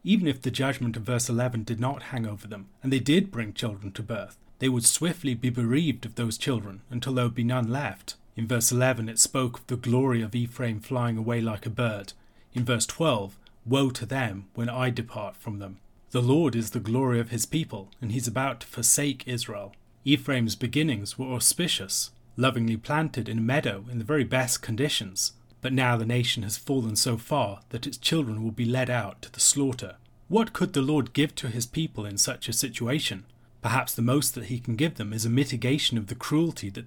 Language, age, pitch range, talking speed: English, 30-49, 115-135 Hz, 215 wpm